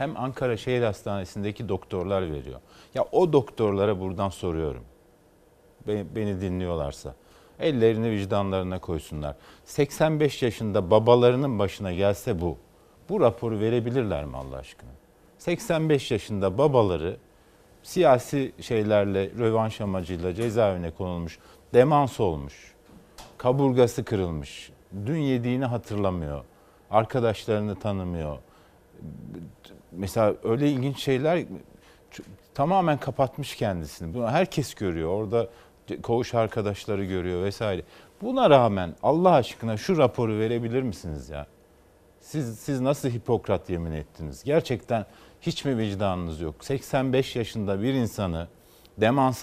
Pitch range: 95-125 Hz